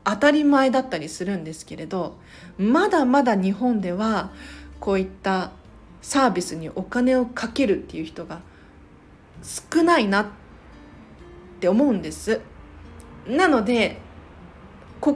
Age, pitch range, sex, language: 40-59, 185-270 Hz, female, Japanese